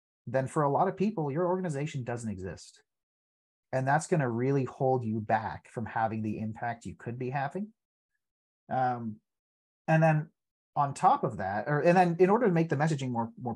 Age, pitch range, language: 30-49, 115-160 Hz, English